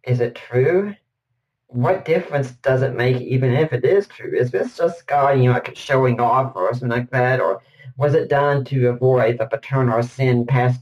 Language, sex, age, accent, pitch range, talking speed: English, male, 40-59, American, 125-145 Hz, 200 wpm